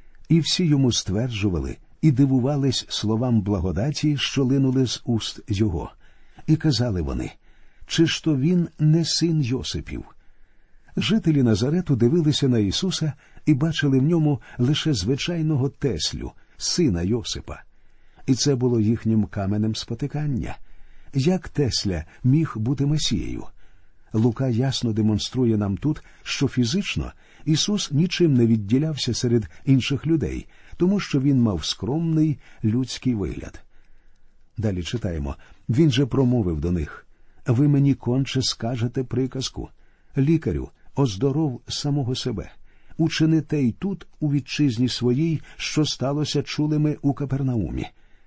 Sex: male